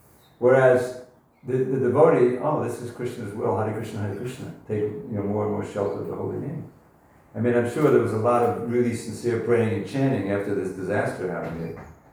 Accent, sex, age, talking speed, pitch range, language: American, male, 60-79, 215 wpm, 100-125 Hz, English